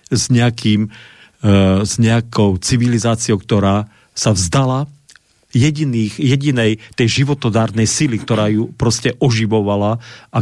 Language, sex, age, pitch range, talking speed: Slovak, male, 50-69, 110-135 Hz, 110 wpm